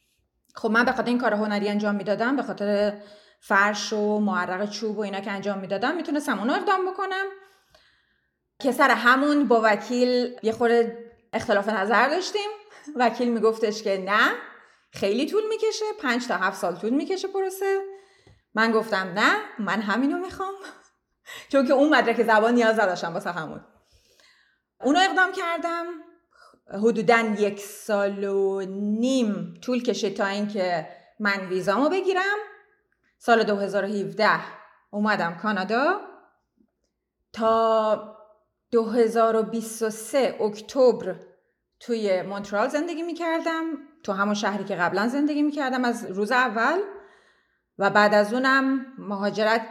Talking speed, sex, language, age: 125 wpm, female, Persian, 30-49